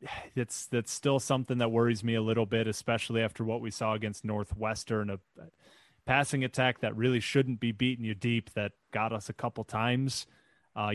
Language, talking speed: English, 190 wpm